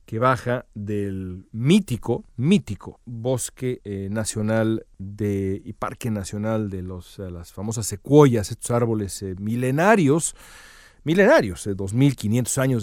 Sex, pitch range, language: male, 100-125 Hz, Spanish